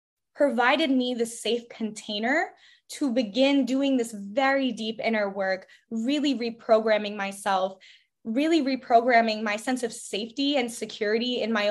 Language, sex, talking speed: English, female, 135 wpm